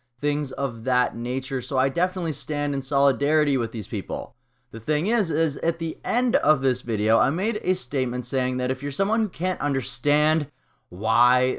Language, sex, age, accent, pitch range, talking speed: English, male, 20-39, American, 125-170 Hz, 185 wpm